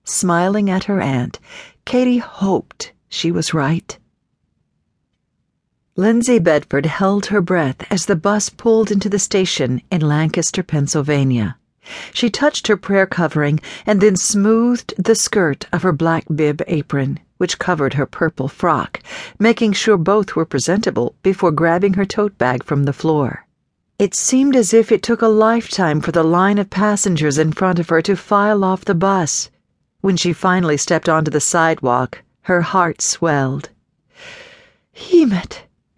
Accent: American